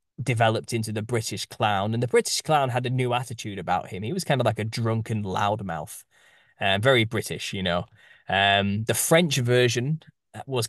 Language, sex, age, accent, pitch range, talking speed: English, male, 10-29, British, 100-130 Hz, 190 wpm